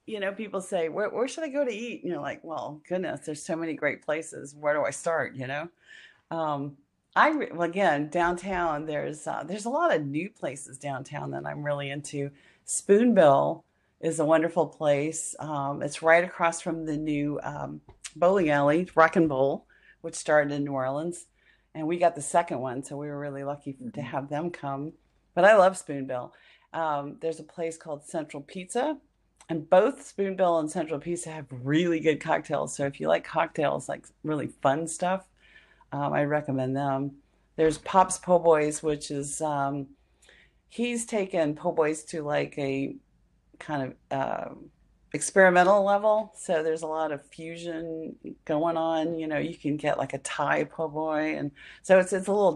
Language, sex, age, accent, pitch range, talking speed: English, female, 40-59, American, 145-175 Hz, 185 wpm